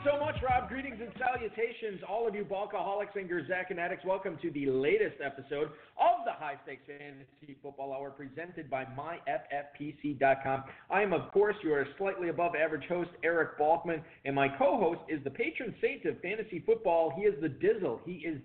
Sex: male